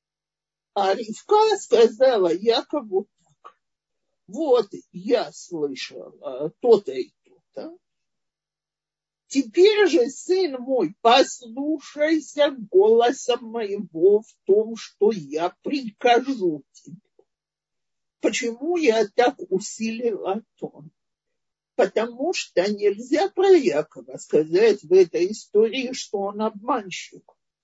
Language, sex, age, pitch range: Russian, male, 50-69, 210-335 Hz